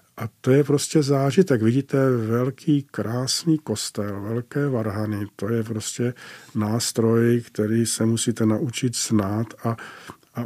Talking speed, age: 125 wpm, 50-69